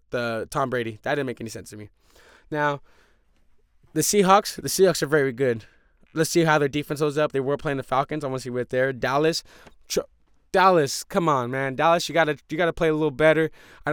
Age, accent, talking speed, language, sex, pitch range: 20-39, American, 220 wpm, English, male, 140-180 Hz